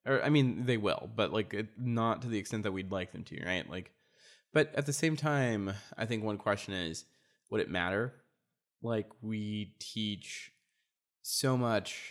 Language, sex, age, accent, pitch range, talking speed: English, male, 20-39, American, 95-115 Hz, 180 wpm